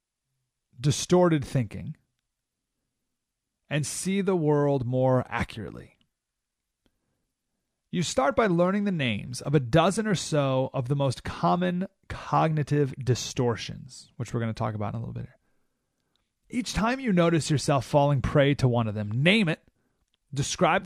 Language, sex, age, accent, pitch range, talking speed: English, male, 30-49, American, 125-175 Hz, 145 wpm